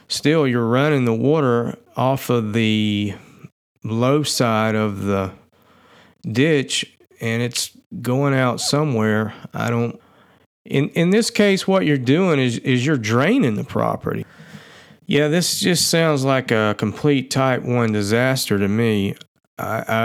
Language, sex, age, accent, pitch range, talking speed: English, male, 40-59, American, 110-135 Hz, 140 wpm